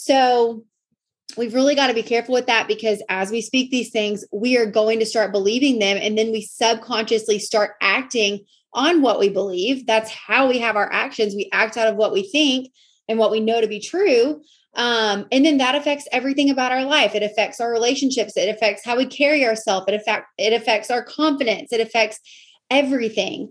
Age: 30-49